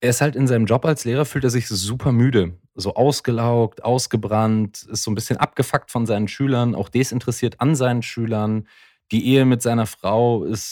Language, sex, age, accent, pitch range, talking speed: German, male, 20-39, German, 100-120 Hz, 195 wpm